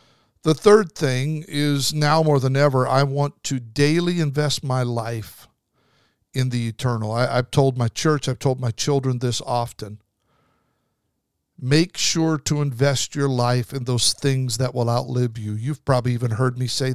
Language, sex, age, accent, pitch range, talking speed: English, male, 50-69, American, 120-150 Hz, 165 wpm